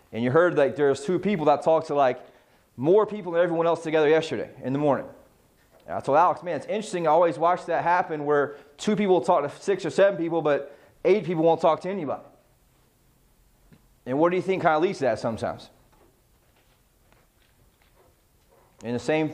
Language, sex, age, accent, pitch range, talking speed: English, male, 30-49, American, 150-185 Hz, 190 wpm